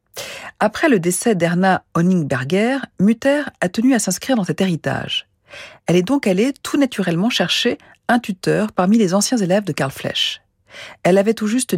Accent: French